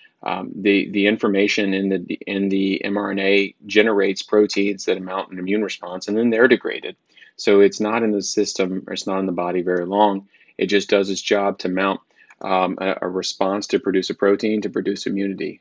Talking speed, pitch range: 200 wpm, 95-105 Hz